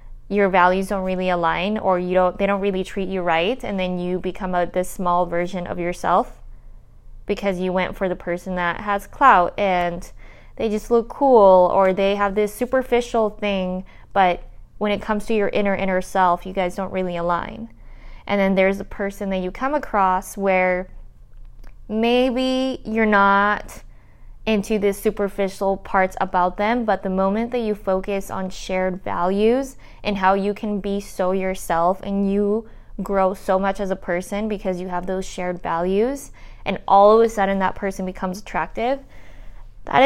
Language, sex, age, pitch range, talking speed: English, female, 20-39, 185-210 Hz, 175 wpm